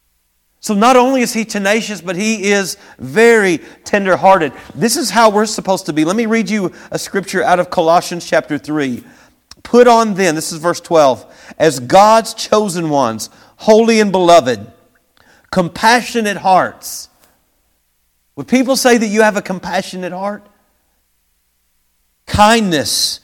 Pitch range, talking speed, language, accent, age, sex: 145-210 Hz, 145 wpm, English, American, 50-69, male